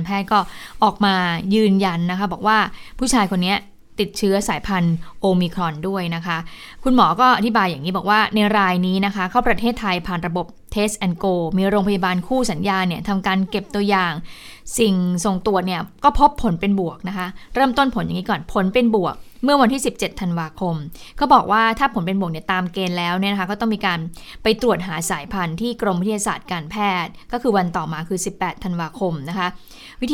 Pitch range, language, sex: 180-215 Hz, Thai, female